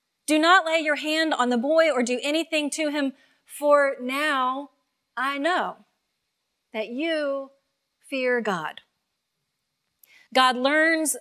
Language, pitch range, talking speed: English, 225-285 Hz, 125 wpm